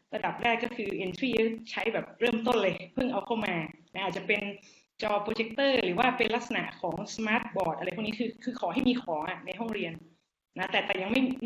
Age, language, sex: 20-39, Thai, female